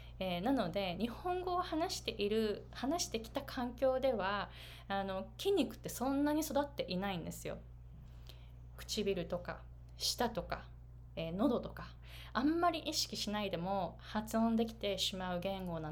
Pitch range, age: 165-270 Hz, 20-39